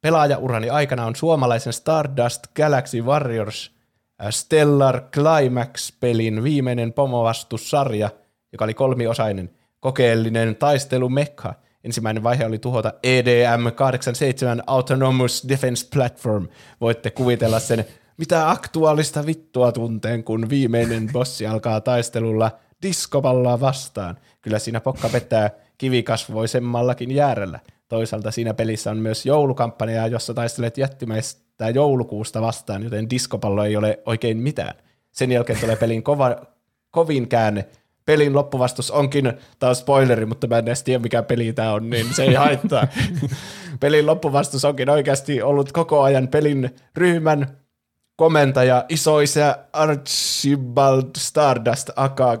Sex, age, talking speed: male, 20-39, 115 wpm